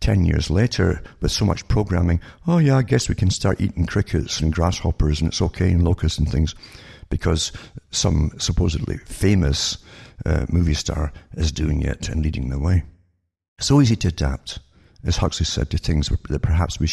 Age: 60-79